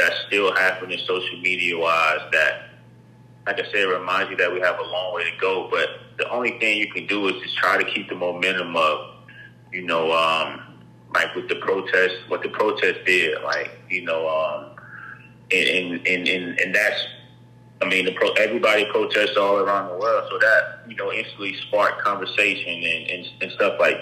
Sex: male